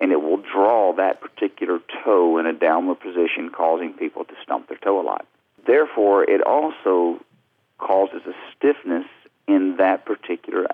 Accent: American